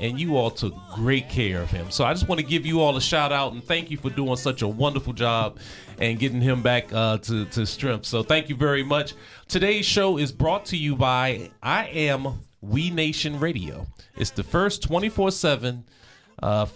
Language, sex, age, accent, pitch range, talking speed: English, male, 40-59, American, 110-150 Hz, 200 wpm